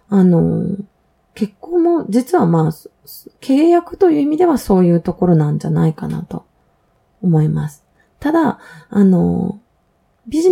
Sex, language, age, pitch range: female, Japanese, 20-39, 165-240 Hz